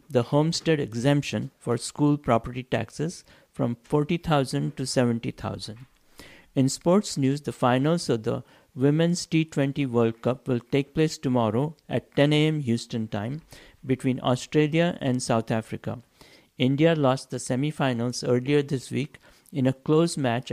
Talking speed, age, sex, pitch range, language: 135 wpm, 60-79, male, 120-150 Hz, English